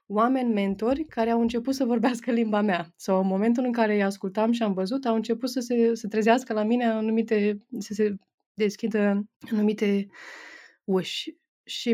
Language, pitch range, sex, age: Romanian, 195-230 Hz, female, 20-39